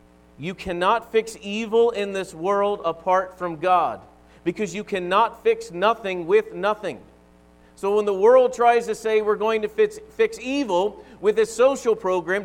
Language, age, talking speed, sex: English, 40-59, 160 wpm, male